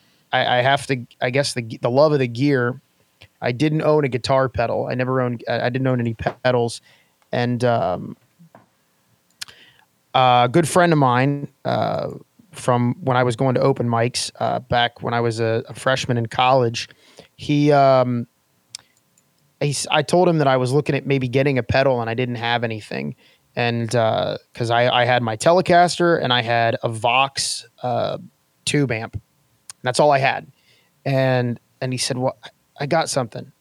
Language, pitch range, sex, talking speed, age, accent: English, 120-145 Hz, male, 175 wpm, 20-39, American